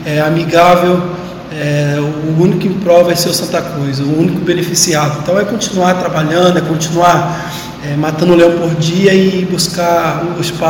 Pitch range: 160-175 Hz